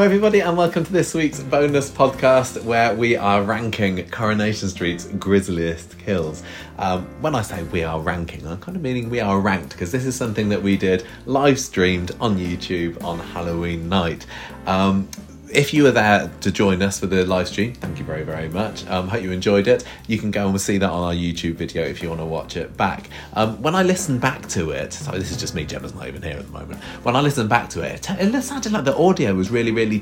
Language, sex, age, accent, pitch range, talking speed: English, male, 30-49, British, 85-110 Hz, 230 wpm